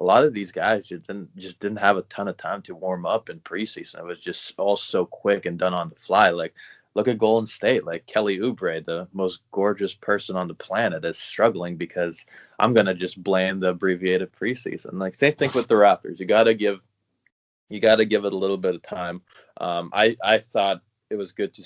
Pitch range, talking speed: 90-100 Hz, 225 wpm